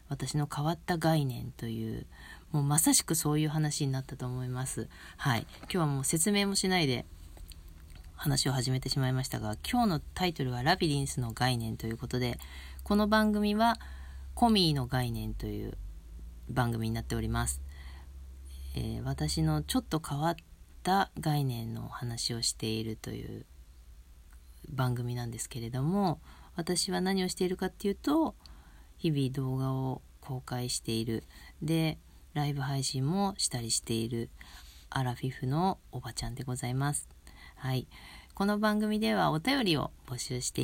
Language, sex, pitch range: Japanese, female, 115-165 Hz